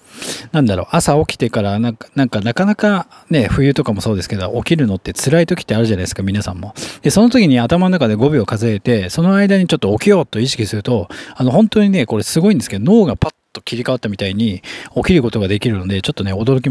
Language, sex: Japanese, male